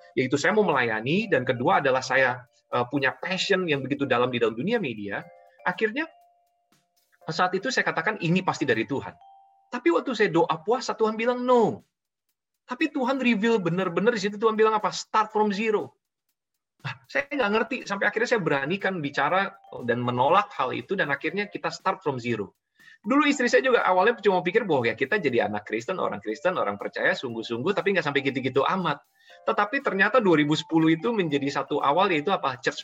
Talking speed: 180 wpm